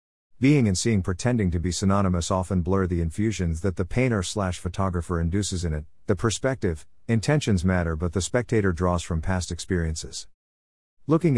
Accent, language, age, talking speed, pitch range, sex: American, English, 50-69, 165 wpm, 90-110 Hz, male